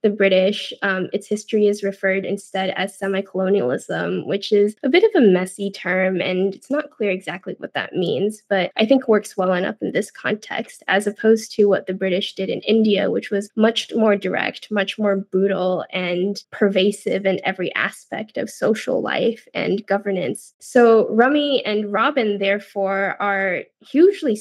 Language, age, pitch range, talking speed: English, 10-29, 195-220 Hz, 170 wpm